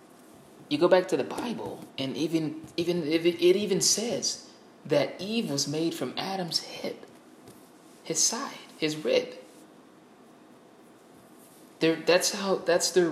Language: English